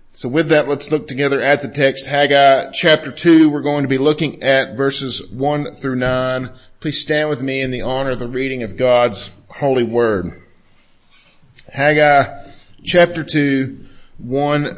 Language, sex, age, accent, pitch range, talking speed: English, male, 40-59, American, 125-155 Hz, 160 wpm